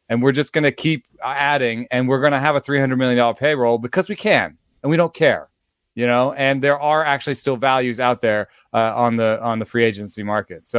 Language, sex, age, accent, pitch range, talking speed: English, male, 30-49, American, 110-130 Hz, 235 wpm